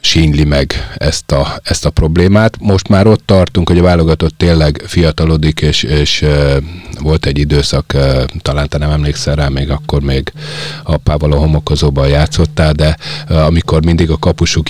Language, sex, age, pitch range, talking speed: Hungarian, male, 30-49, 70-80 Hz, 165 wpm